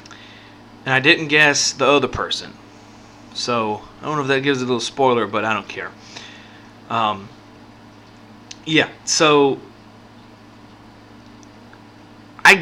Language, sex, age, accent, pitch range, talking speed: English, male, 20-39, American, 110-155 Hz, 120 wpm